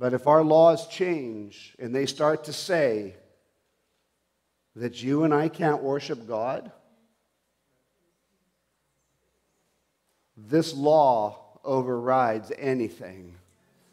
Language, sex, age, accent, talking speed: English, male, 50-69, American, 90 wpm